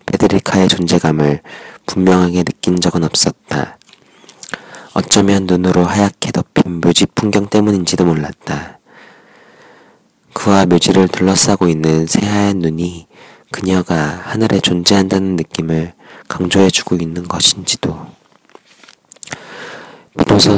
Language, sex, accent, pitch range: Korean, male, native, 85-95 Hz